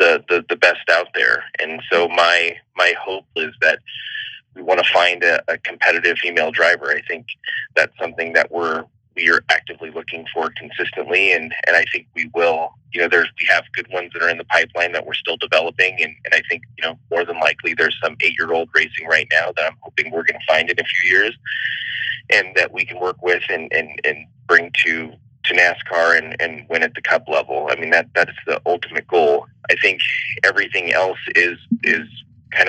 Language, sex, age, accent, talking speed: English, male, 30-49, American, 215 wpm